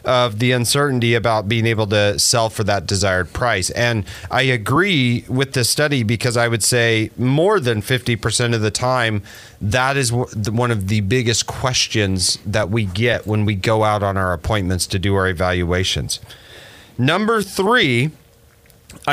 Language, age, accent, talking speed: English, 30-49, American, 160 wpm